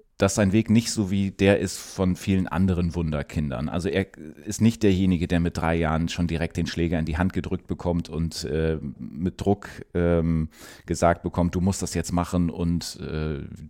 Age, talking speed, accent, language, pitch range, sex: 30-49, 195 wpm, German, German, 85-105 Hz, male